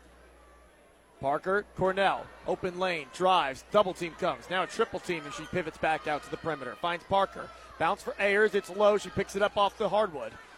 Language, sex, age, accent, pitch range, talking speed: English, male, 30-49, American, 190-240 Hz, 195 wpm